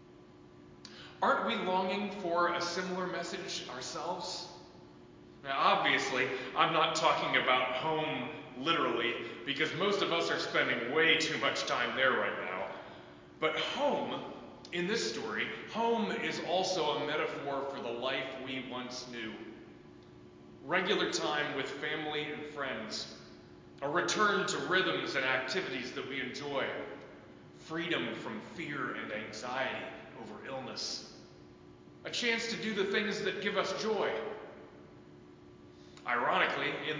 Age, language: 30-49, English